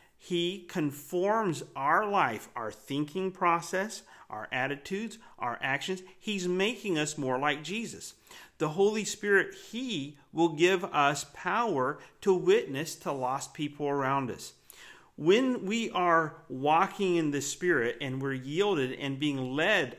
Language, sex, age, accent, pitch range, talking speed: English, male, 40-59, American, 135-180 Hz, 135 wpm